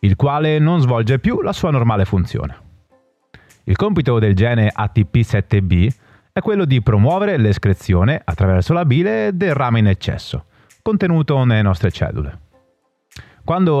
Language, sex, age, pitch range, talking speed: Italian, male, 30-49, 100-145 Hz, 135 wpm